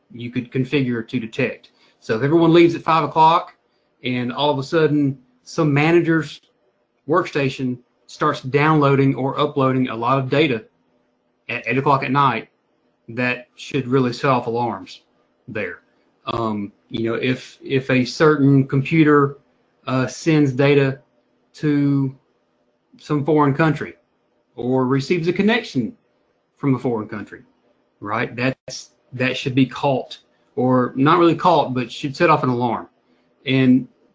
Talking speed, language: 140 wpm, English